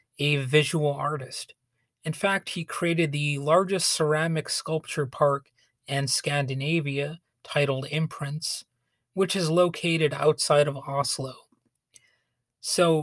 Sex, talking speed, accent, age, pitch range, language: male, 105 wpm, American, 30-49, 130-155 Hz, English